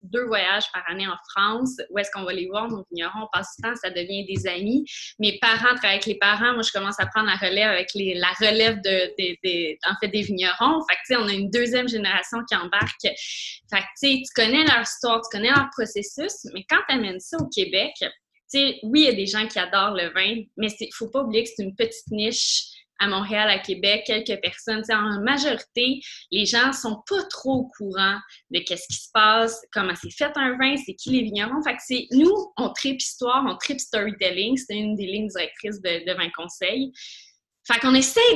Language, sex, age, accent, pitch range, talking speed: French, female, 20-39, Canadian, 200-255 Hz, 235 wpm